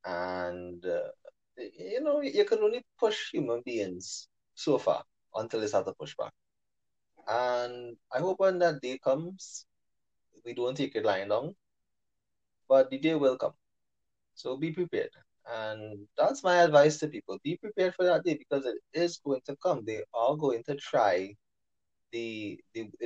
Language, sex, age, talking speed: English, male, 20-39, 165 wpm